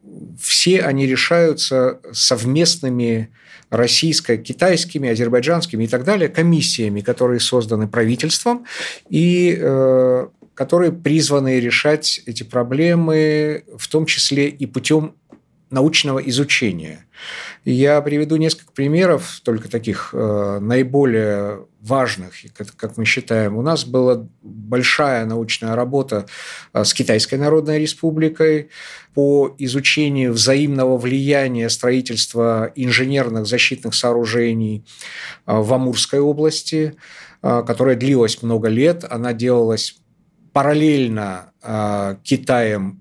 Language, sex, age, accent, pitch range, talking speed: Russian, male, 50-69, native, 115-155 Hz, 95 wpm